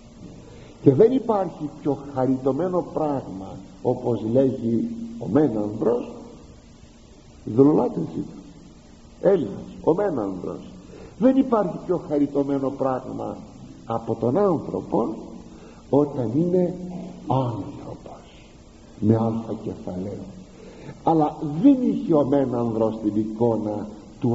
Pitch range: 110-180 Hz